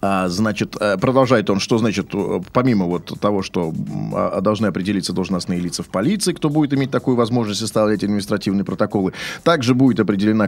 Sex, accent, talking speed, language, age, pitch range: male, native, 150 wpm, Russian, 30-49, 95-140 Hz